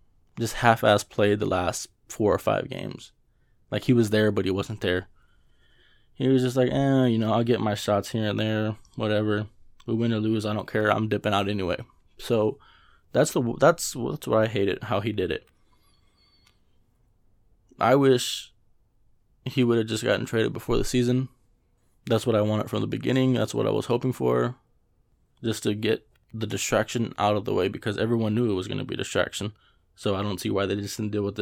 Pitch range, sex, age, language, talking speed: 105-120 Hz, male, 20-39, English, 210 wpm